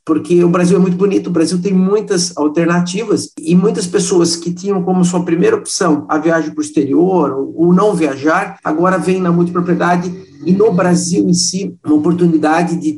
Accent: Brazilian